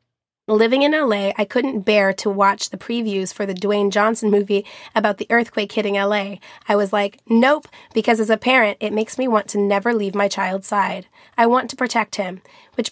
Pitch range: 205-240 Hz